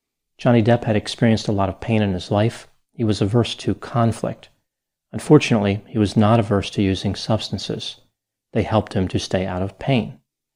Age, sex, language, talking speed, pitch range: 40-59, male, English, 180 wpm, 100-120 Hz